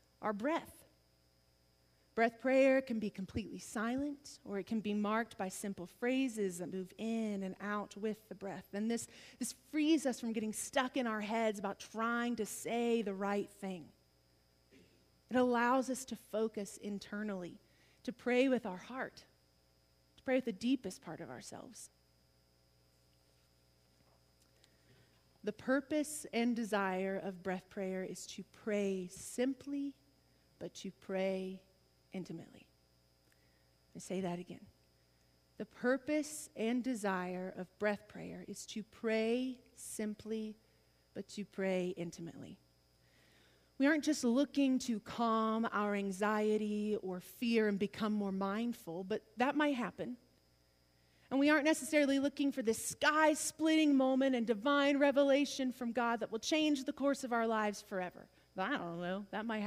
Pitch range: 170-245 Hz